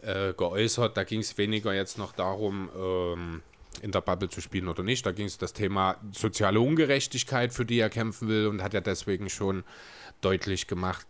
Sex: male